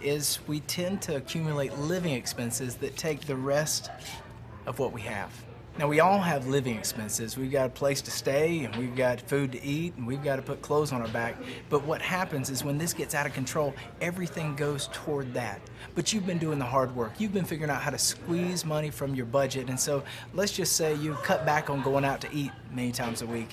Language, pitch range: English, 120-150 Hz